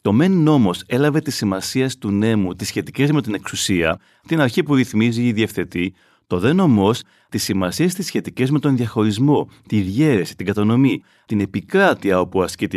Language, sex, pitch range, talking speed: Greek, male, 95-155 Hz, 175 wpm